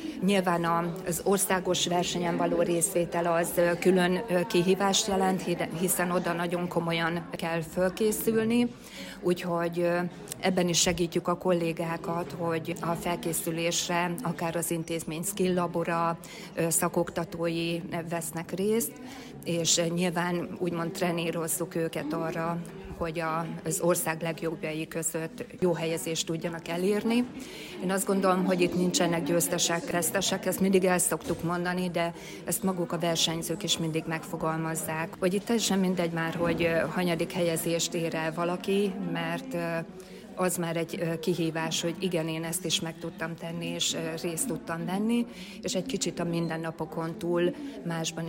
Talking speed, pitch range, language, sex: 130 wpm, 165-180 Hz, Hungarian, female